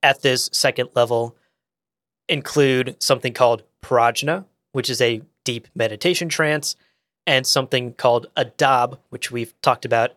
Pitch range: 120-155 Hz